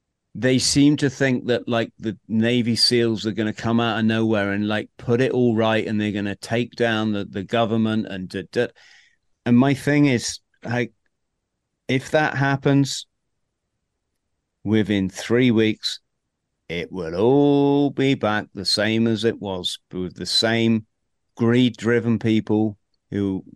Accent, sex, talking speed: British, male, 155 wpm